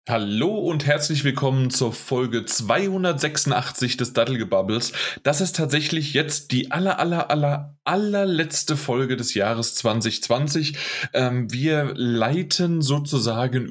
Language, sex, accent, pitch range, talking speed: German, male, German, 115-150 Hz, 120 wpm